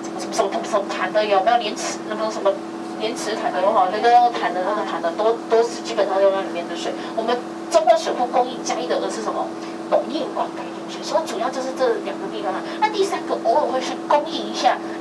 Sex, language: female, Chinese